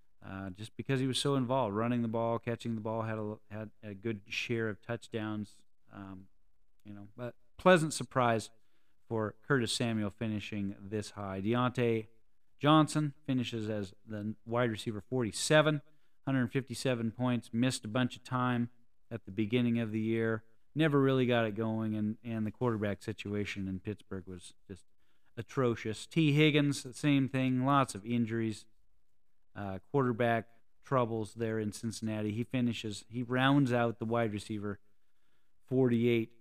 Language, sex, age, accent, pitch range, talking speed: English, male, 40-59, American, 105-130 Hz, 150 wpm